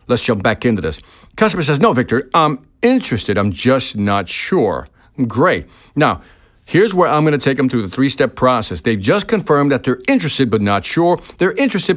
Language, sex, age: English, male, 50-69